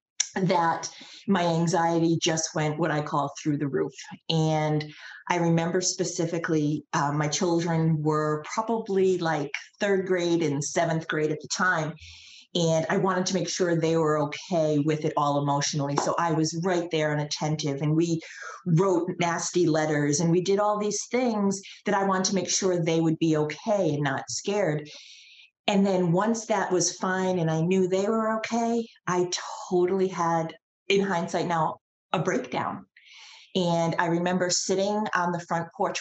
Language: English